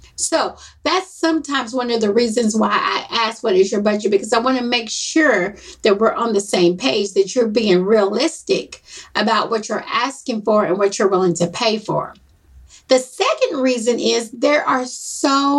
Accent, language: American, English